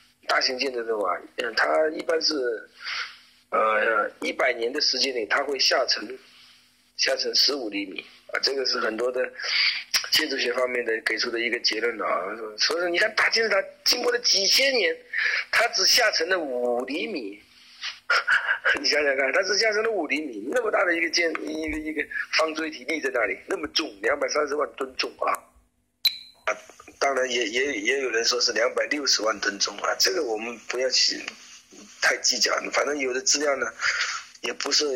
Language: Chinese